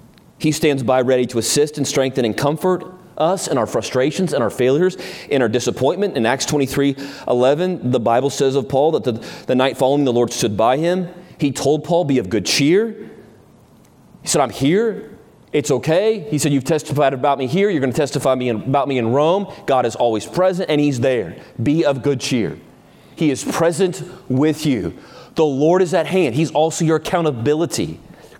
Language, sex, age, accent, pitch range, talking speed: English, male, 30-49, American, 140-200 Hz, 195 wpm